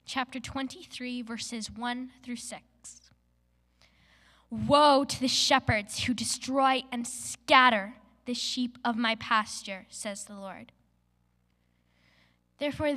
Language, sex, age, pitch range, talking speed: English, female, 10-29, 185-265 Hz, 105 wpm